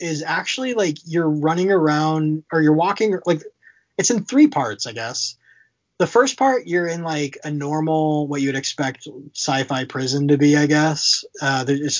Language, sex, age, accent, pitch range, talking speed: English, male, 20-39, American, 130-155 Hz, 180 wpm